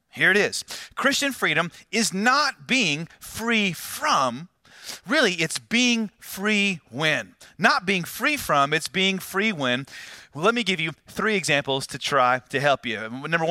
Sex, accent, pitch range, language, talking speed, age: male, American, 140-195 Hz, English, 155 wpm, 30-49